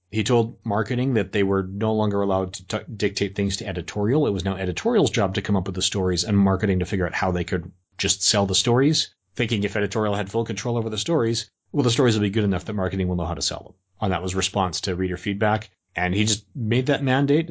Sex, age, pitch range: male, 30-49, 90-105 Hz